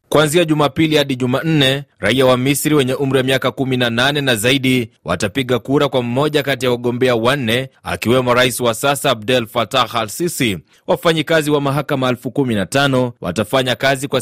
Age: 30-49